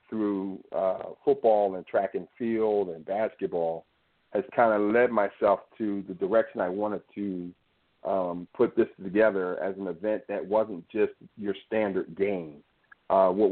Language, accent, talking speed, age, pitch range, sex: English, American, 155 wpm, 40-59, 95-105 Hz, male